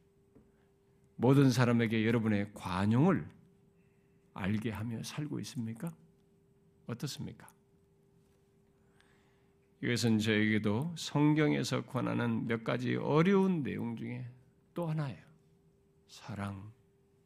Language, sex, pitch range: Korean, male, 105-150 Hz